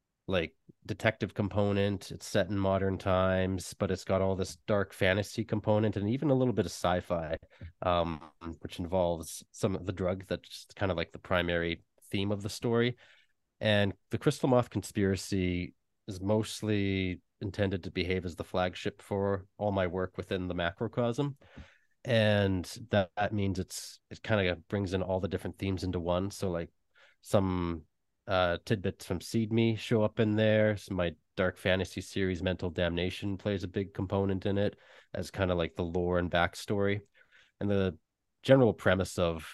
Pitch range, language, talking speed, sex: 90-105 Hz, English, 175 wpm, male